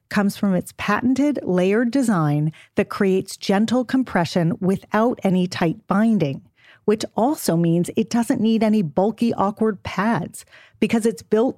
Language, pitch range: English, 165-225 Hz